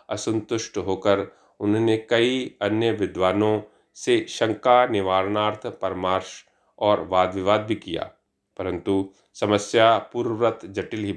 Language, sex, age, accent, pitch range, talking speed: Hindi, male, 40-59, native, 100-125 Hz, 105 wpm